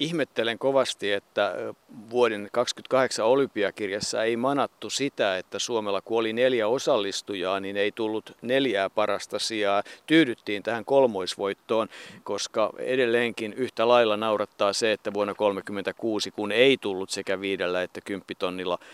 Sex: male